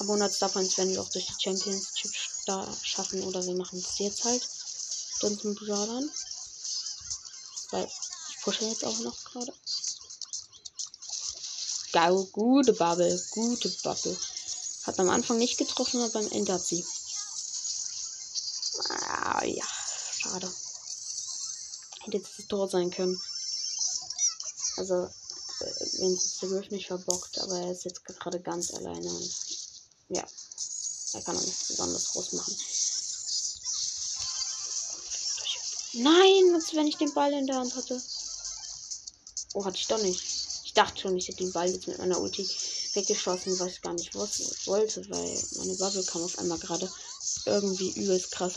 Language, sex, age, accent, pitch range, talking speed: German, female, 20-39, German, 180-235 Hz, 140 wpm